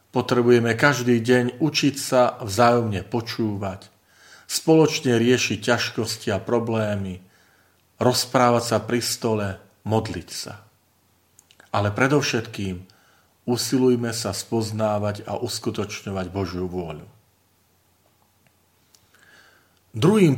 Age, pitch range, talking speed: 40-59, 100-130 Hz, 80 wpm